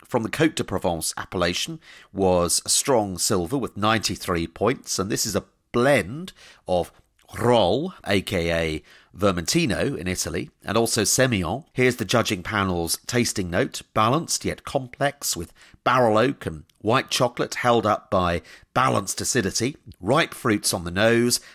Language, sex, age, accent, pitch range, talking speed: English, male, 40-59, British, 90-120 Hz, 140 wpm